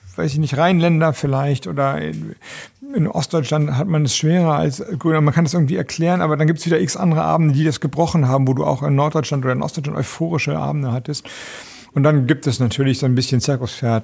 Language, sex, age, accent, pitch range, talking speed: German, male, 50-69, German, 120-145 Hz, 220 wpm